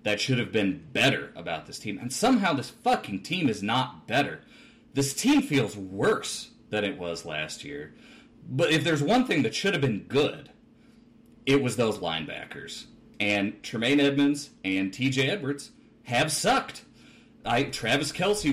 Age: 30-49